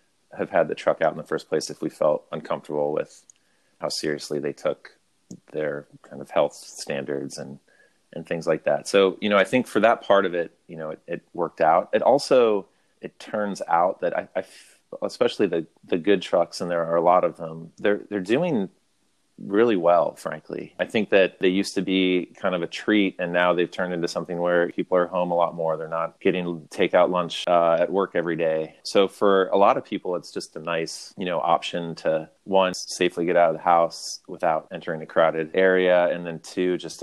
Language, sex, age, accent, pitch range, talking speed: English, male, 30-49, American, 80-90 Hz, 220 wpm